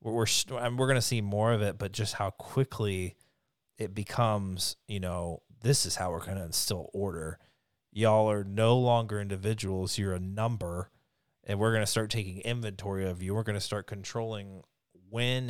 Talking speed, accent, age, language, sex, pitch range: 180 wpm, American, 30-49, English, male, 100-120 Hz